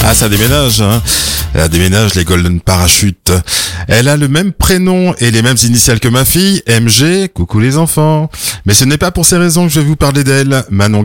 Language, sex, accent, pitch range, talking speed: French, male, French, 95-135 Hz, 210 wpm